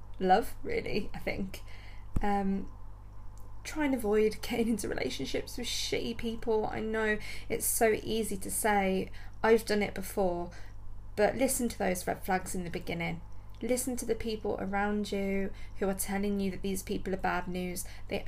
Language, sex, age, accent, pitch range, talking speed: English, female, 20-39, British, 170-215 Hz, 165 wpm